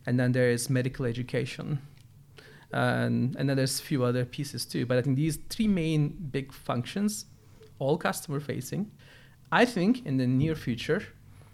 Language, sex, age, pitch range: English, male, 40-59, 130-150 Hz